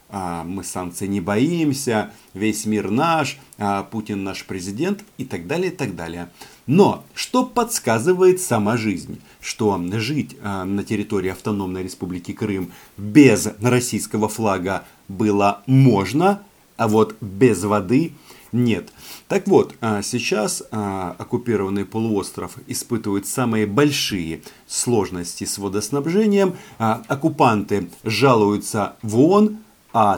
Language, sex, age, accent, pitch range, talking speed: Russian, male, 40-59, native, 100-140 Hz, 105 wpm